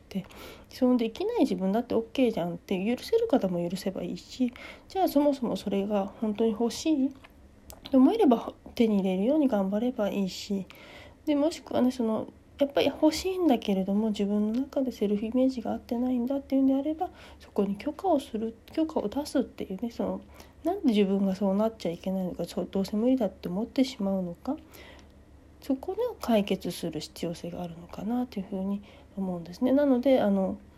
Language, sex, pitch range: Japanese, female, 195-285 Hz